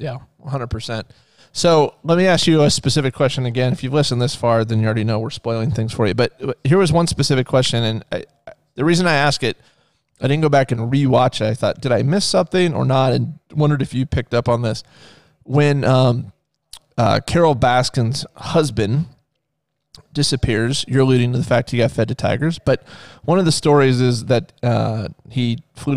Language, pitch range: English, 115-145 Hz